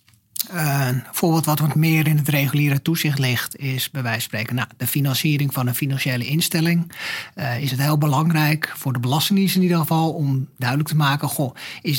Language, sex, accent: Dutch, male, Dutch